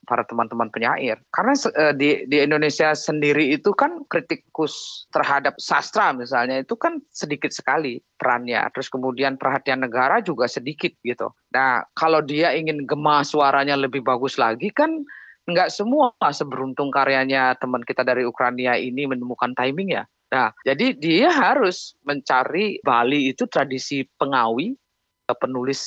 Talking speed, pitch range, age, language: 135 wpm, 125-155 Hz, 30-49, Indonesian